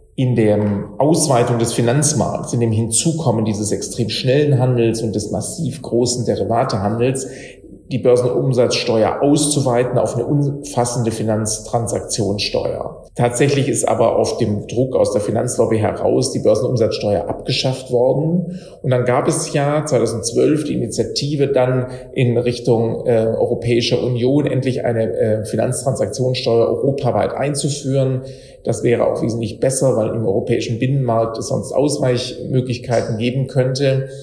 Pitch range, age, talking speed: 115-135 Hz, 40-59, 125 wpm